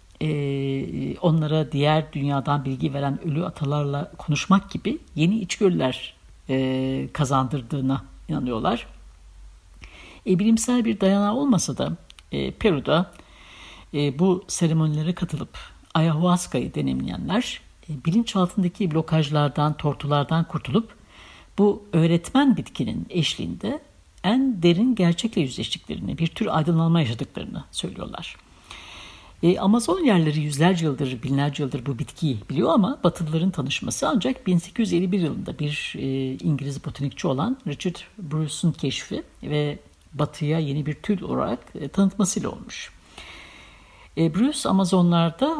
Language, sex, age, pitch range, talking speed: Turkish, female, 60-79, 135-185 Hz, 105 wpm